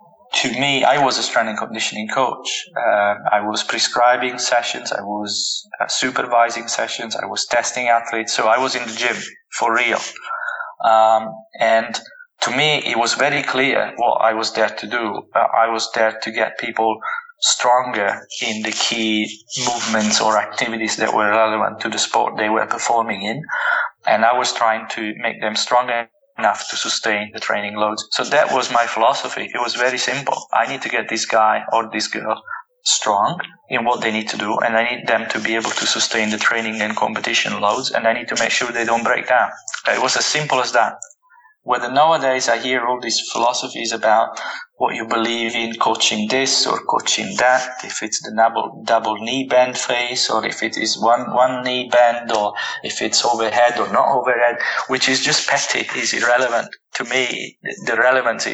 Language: English